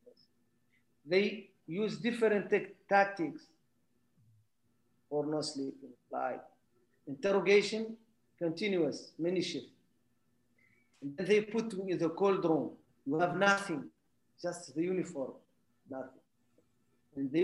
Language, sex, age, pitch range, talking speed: English, male, 50-69, 120-195 Hz, 105 wpm